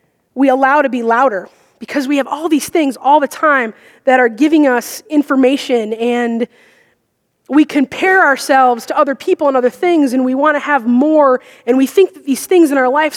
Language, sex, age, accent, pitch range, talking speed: English, female, 20-39, American, 240-285 Hz, 195 wpm